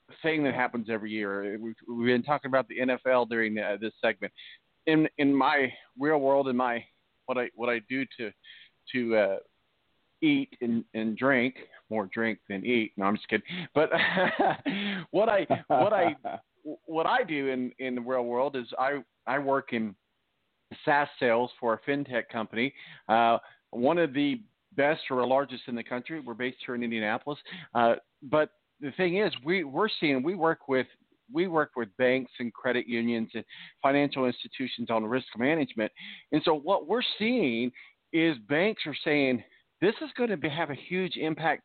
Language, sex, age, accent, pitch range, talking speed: English, male, 40-59, American, 120-160 Hz, 180 wpm